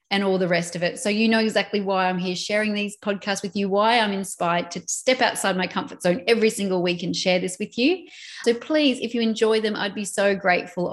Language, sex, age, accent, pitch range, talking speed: English, female, 30-49, Australian, 180-230 Hz, 245 wpm